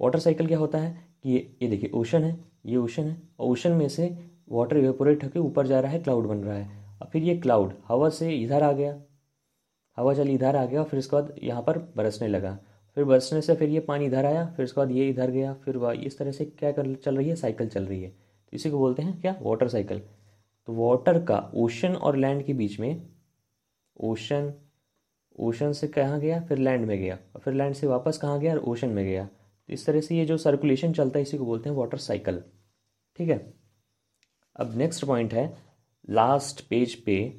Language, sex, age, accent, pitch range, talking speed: Hindi, male, 20-39, native, 105-150 Hz, 215 wpm